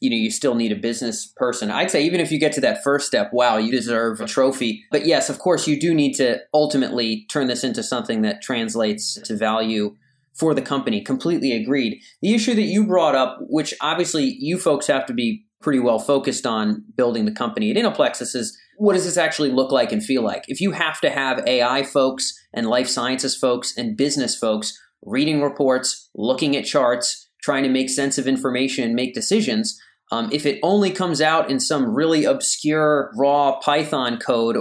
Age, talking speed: 30-49, 205 wpm